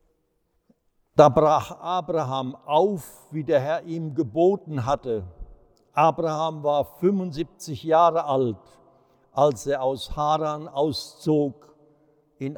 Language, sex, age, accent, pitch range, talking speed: German, male, 60-79, German, 135-175 Hz, 100 wpm